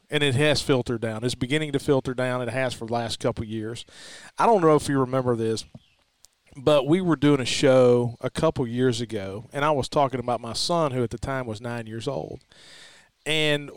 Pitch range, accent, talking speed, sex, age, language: 120-145 Hz, American, 220 wpm, male, 40-59, English